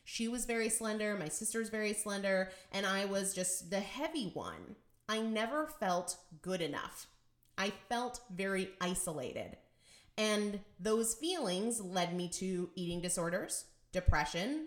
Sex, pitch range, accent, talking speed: female, 180-230 Hz, American, 135 wpm